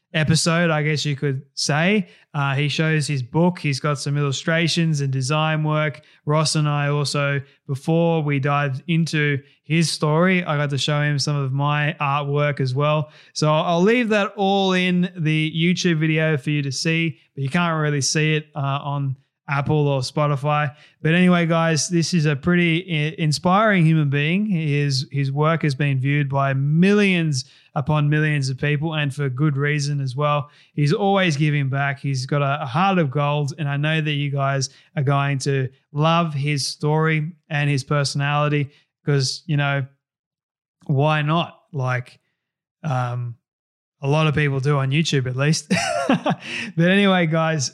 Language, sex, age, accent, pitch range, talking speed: English, male, 20-39, Australian, 145-165 Hz, 170 wpm